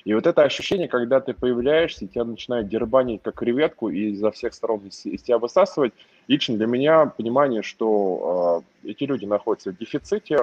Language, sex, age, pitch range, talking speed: Russian, male, 20-39, 100-140 Hz, 175 wpm